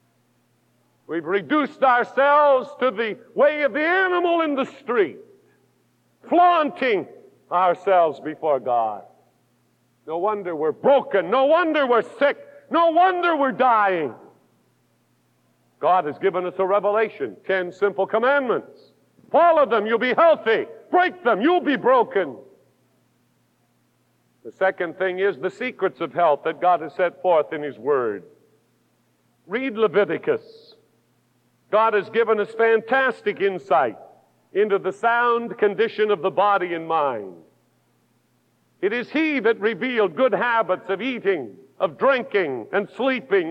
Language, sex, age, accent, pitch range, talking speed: English, male, 50-69, American, 200-295 Hz, 130 wpm